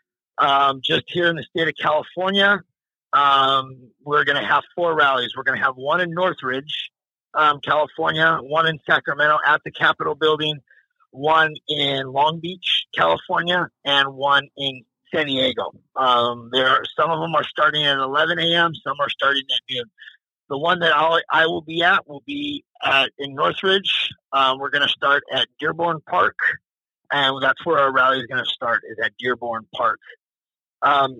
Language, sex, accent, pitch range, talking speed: English, male, American, 135-165 Hz, 175 wpm